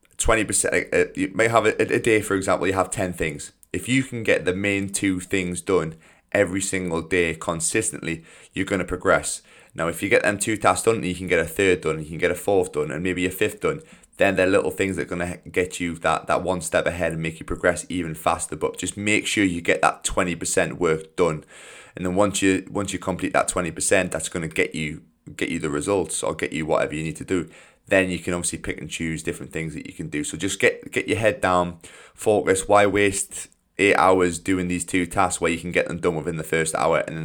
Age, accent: 20-39, British